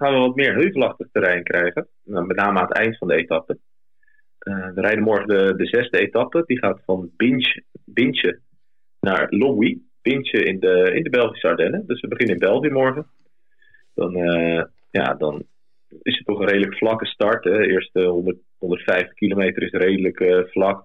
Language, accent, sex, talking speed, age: Dutch, Dutch, male, 180 wpm, 30-49